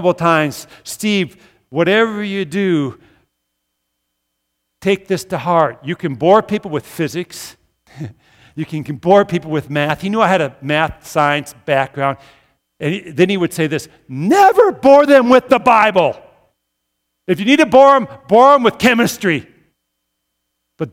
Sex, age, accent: male, 50-69, American